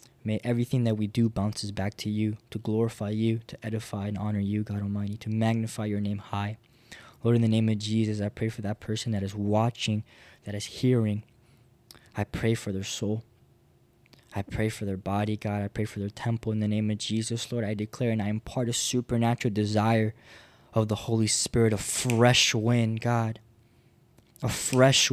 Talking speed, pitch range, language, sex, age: 195 wpm, 110-160 Hz, English, male, 10-29